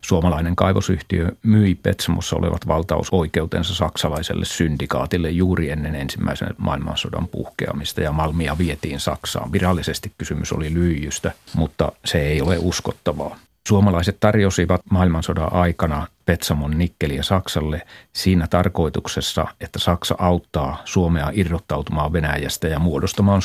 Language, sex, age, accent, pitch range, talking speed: Finnish, male, 30-49, native, 80-95 Hz, 110 wpm